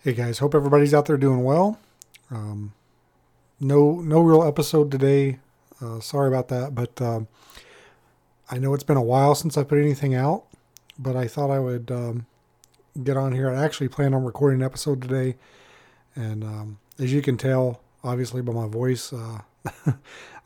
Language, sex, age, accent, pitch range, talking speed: English, male, 40-59, American, 125-145 Hz, 175 wpm